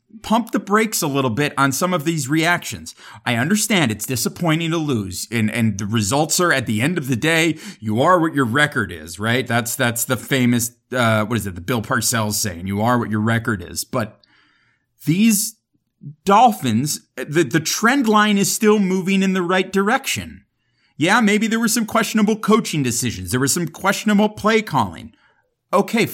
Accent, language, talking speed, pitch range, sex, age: American, English, 190 wpm, 115-180 Hz, male, 30-49